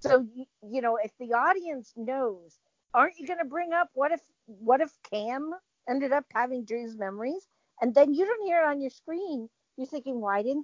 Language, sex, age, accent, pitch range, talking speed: English, female, 50-69, American, 220-285 Hz, 205 wpm